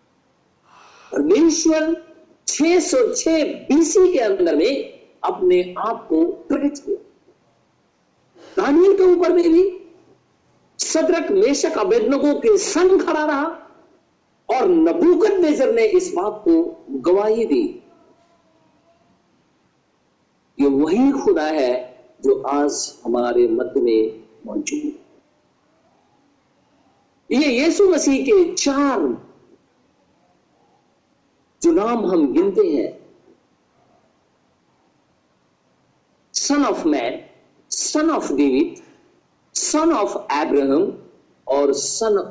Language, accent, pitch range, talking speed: Hindi, native, 295-375 Hz, 75 wpm